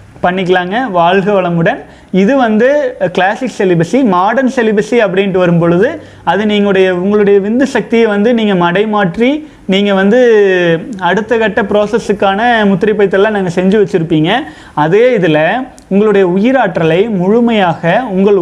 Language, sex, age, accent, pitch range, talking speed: Tamil, male, 30-49, native, 185-220 Hz, 115 wpm